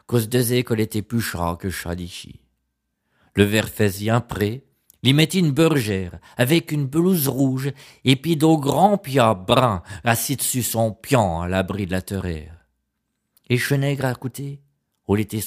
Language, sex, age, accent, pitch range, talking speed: French, male, 50-69, French, 105-150 Hz, 165 wpm